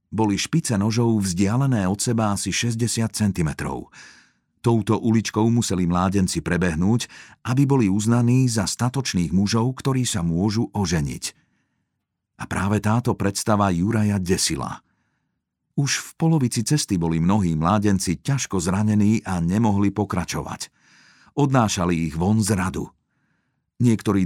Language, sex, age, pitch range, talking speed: Slovak, male, 50-69, 95-120 Hz, 120 wpm